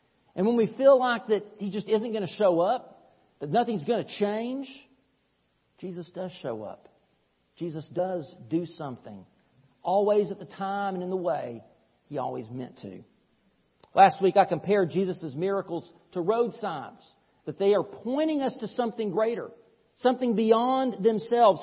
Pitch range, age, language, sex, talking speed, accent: 180-235 Hz, 50-69, English, male, 160 wpm, American